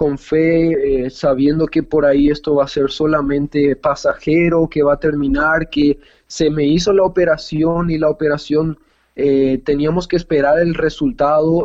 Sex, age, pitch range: male, 20-39, 145-170 Hz